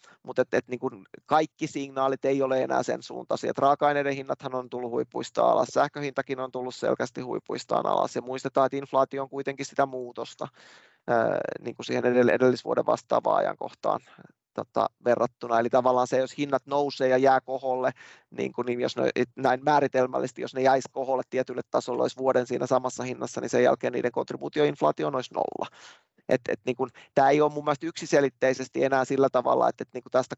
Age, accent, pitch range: 20-39, native, 125-140 Hz